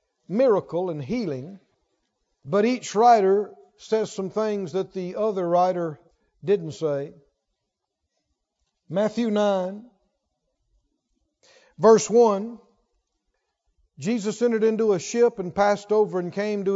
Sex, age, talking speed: male, 50-69, 105 wpm